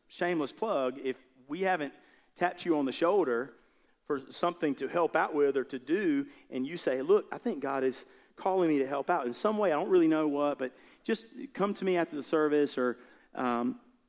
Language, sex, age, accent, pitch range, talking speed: English, male, 40-59, American, 120-165 Hz, 215 wpm